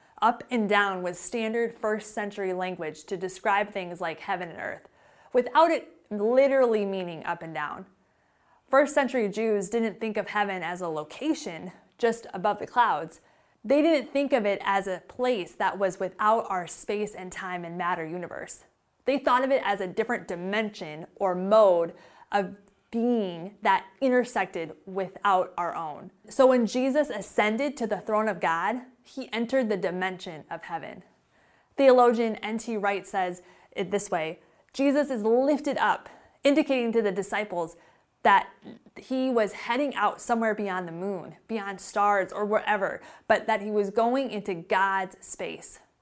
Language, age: English, 20-39